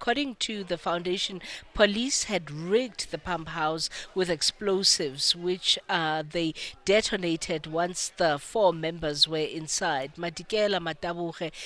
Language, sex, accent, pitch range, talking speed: English, female, South African, 160-185 Hz, 125 wpm